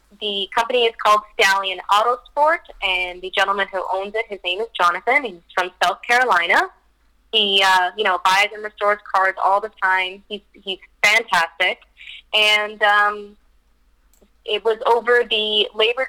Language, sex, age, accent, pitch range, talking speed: English, female, 20-39, American, 195-245 Hz, 155 wpm